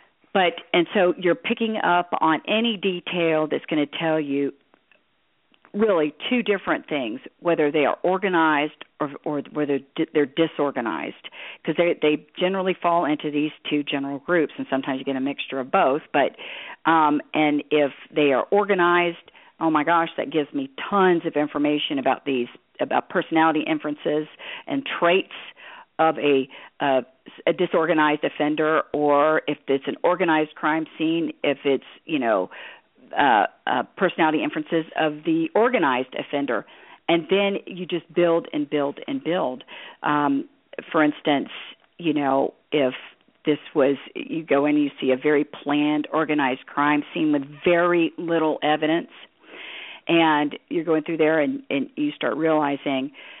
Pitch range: 150-175 Hz